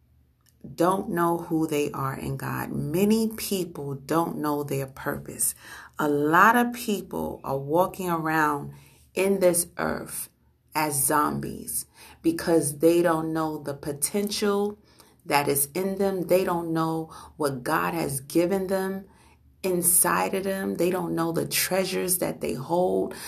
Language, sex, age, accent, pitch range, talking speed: English, female, 40-59, American, 140-185 Hz, 140 wpm